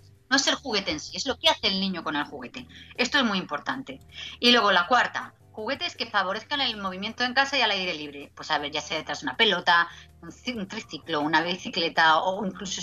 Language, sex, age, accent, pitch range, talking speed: Spanish, female, 30-49, Spanish, 180-255 Hz, 230 wpm